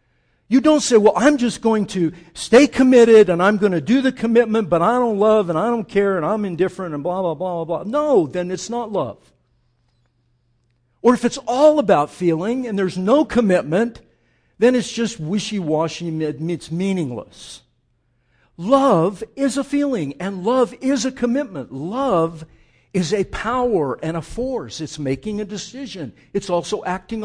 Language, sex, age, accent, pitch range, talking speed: English, male, 60-79, American, 155-230 Hz, 175 wpm